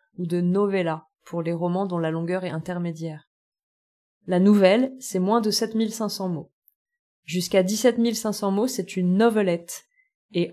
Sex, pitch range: female, 175-205 Hz